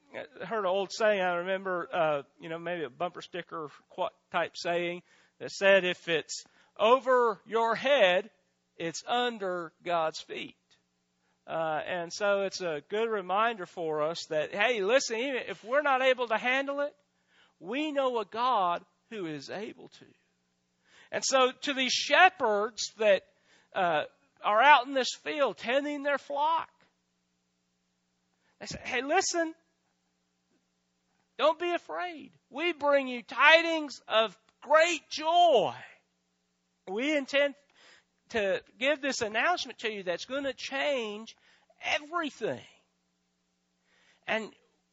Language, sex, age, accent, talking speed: English, male, 40-59, American, 130 wpm